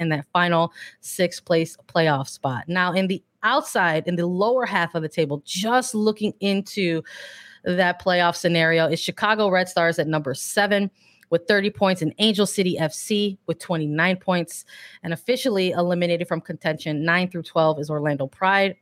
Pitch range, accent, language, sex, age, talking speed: 160-195 Hz, American, English, female, 20-39, 165 wpm